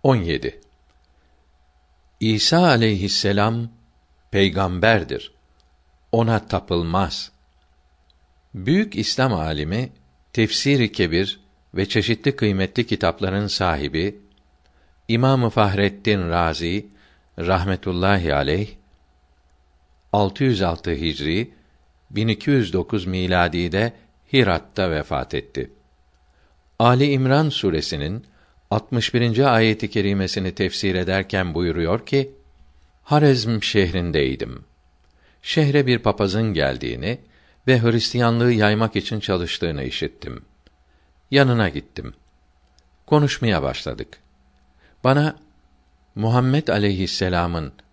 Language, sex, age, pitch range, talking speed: Turkish, male, 60-79, 75-110 Hz, 70 wpm